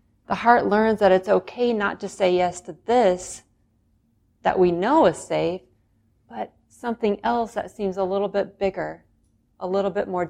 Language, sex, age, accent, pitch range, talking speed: English, female, 40-59, American, 120-205 Hz, 175 wpm